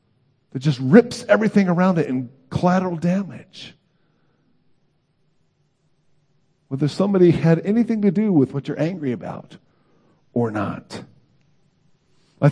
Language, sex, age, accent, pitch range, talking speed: English, male, 50-69, American, 135-170 Hz, 110 wpm